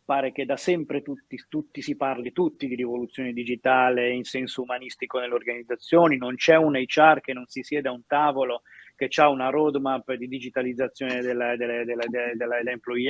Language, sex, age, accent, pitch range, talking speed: Italian, male, 30-49, native, 120-145 Hz, 160 wpm